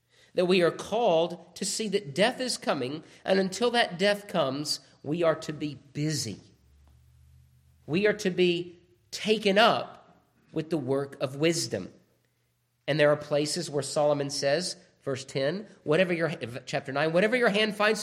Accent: American